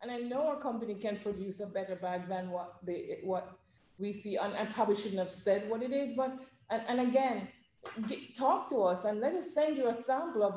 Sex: female